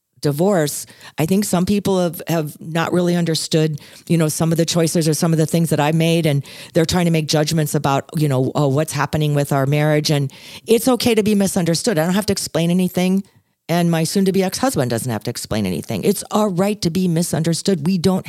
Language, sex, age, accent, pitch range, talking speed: English, female, 40-59, American, 120-170 Hz, 230 wpm